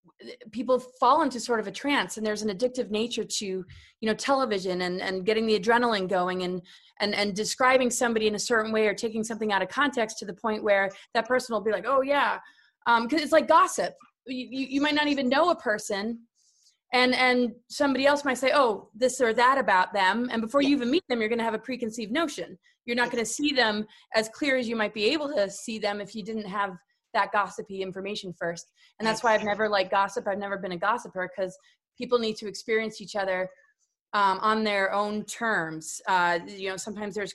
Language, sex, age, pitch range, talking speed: English, female, 20-39, 205-250 Hz, 225 wpm